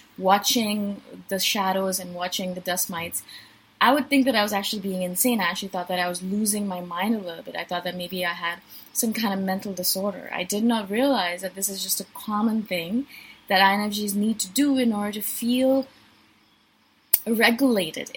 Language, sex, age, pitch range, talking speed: English, female, 20-39, 190-245 Hz, 200 wpm